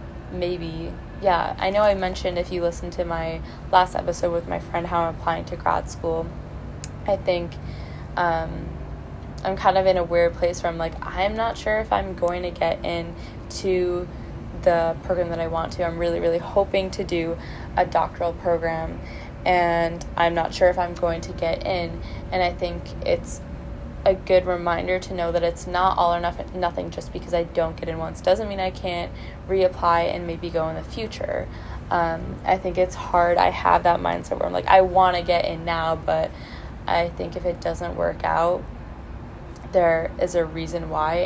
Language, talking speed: English, 195 wpm